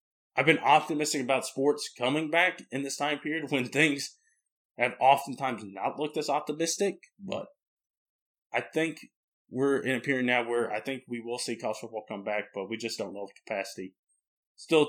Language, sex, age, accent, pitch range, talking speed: English, male, 20-39, American, 115-140 Hz, 180 wpm